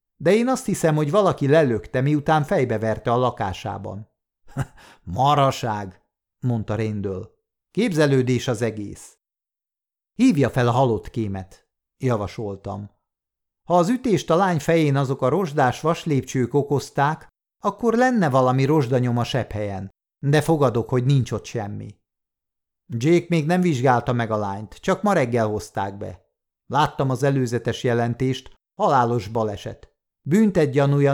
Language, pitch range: Hungarian, 105-150 Hz